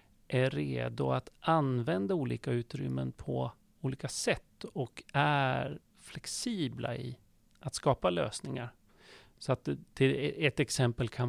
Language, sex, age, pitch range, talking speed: Swedish, male, 40-59, 110-135 Hz, 120 wpm